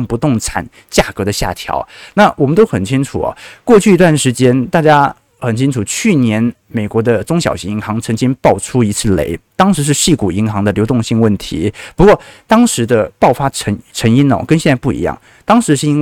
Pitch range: 105-145 Hz